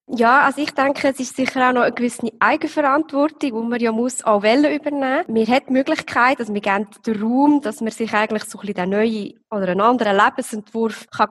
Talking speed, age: 210 wpm, 20-39